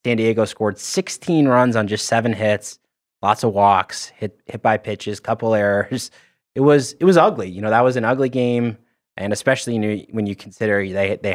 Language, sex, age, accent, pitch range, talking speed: English, male, 20-39, American, 100-125 Hz, 210 wpm